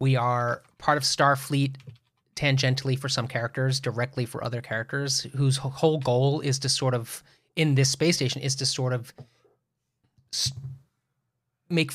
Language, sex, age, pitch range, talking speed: English, male, 30-49, 130-160 Hz, 145 wpm